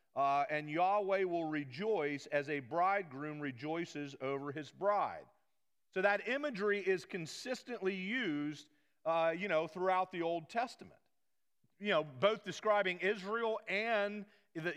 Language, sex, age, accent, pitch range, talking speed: English, male, 40-59, American, 155-205 Hz, 130 wpm